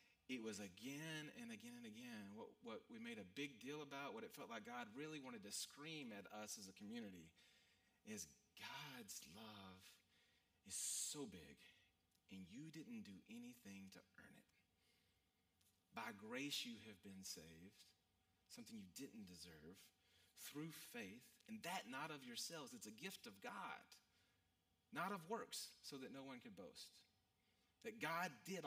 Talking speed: 160 wpm